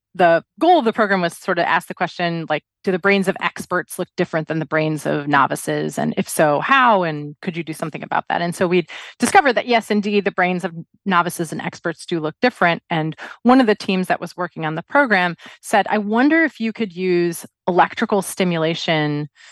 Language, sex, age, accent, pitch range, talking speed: English, female, 30-49, American, 165-210 Hz, 220 wpm